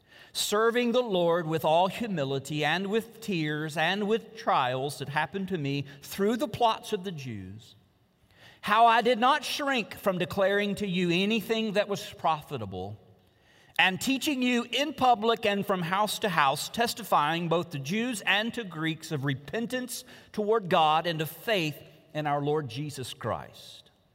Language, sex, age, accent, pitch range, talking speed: English, male, 50-69, American, 130-215 Hz, 160 wpm